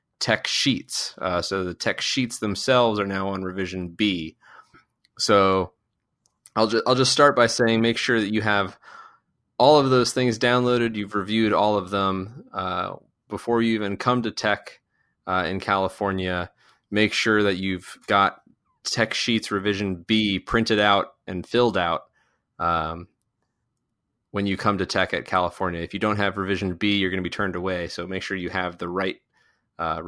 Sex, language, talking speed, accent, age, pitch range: male, English, 175 wpm, American, 20-39, 95-115 Hz